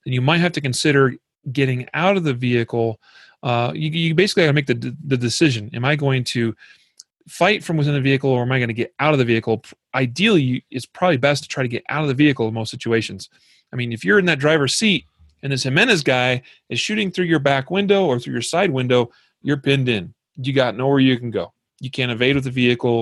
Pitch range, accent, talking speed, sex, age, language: 120-150 Hz, American, 245 wpm, male, 30-49, English